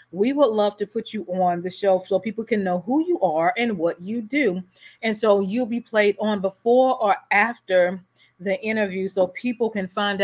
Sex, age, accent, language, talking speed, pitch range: female, 30-49, American, English, 205 wpm, 180-220 Hz